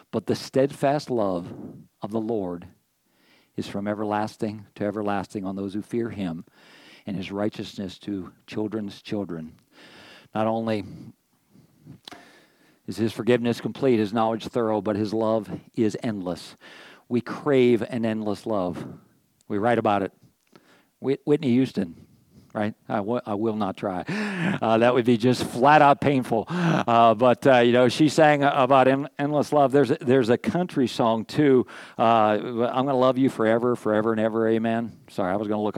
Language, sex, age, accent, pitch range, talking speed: English, male, 50-69, American, 110-150 Hz, 165 wpm